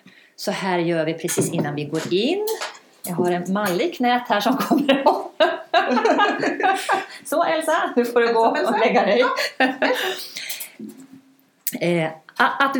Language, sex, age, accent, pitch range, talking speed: Swedish, female, 30-49, native, 175-280 Hz, 130 wpm